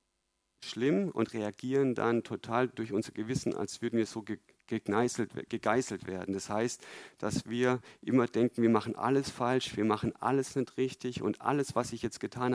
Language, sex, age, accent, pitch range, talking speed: German, male, 50-69, German, 110-125 Hz, 165 wpm